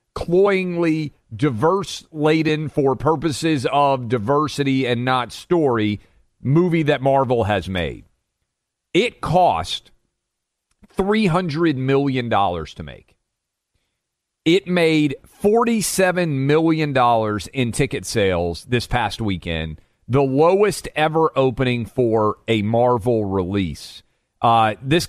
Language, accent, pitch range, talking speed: English, American, 120-160 Hz, 105 wpm